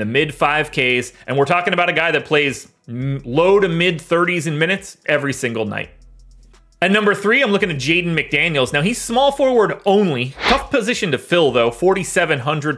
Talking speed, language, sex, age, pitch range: 195 wpm, English, male, 30-49, 145-195 Hz